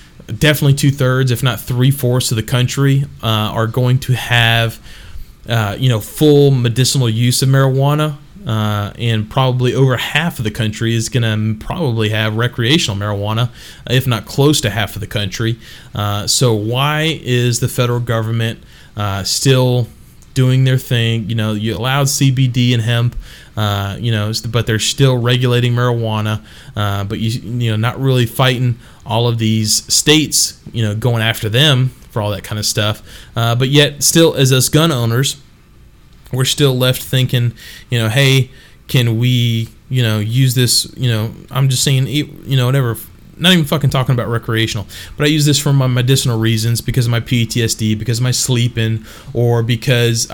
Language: English